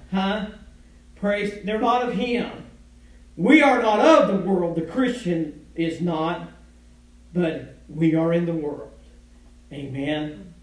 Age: 50-69